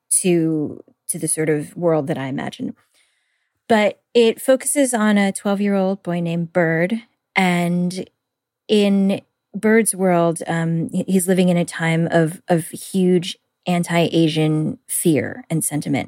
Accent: American